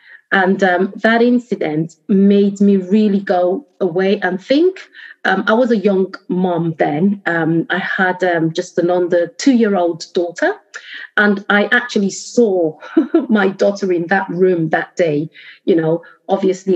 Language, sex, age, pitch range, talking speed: English, female, 30-49, 170-210 Hz, 155 wpm